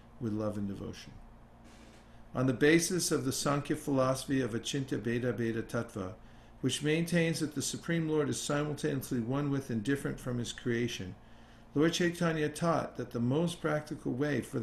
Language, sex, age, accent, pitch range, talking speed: English, male, 50-69, American, 115-150 Hz, 165 wpm